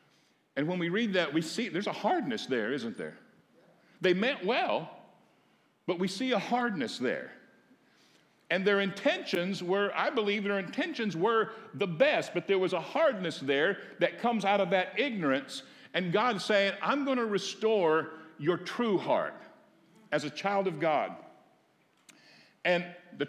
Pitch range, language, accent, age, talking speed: 150-210 Hz, English, American, 60-79, 155 wpm